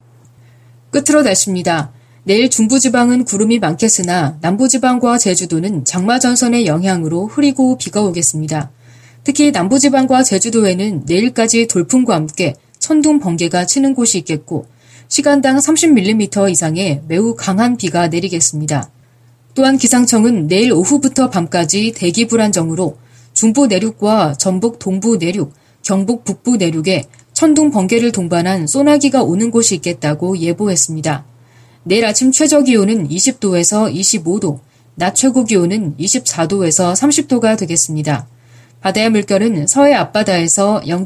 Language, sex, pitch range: Korean, female, 160-235 Hz